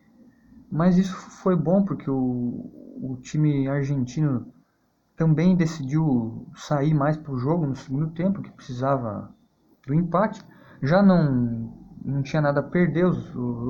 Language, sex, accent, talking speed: Portuguese, male, Brazilian, 145 wpm